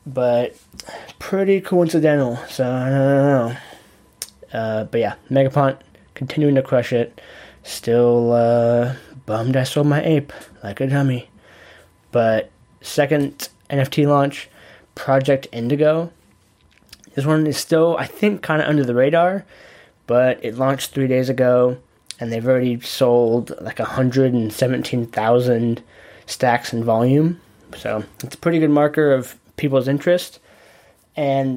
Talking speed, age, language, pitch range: 125 wpm, 10-29, English, 115-145 Hz